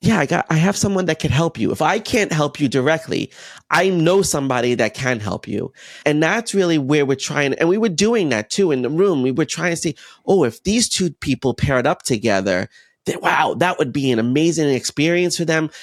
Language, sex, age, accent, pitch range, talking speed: English, male, 30-49, American, 125-165 Hz, 230 wpm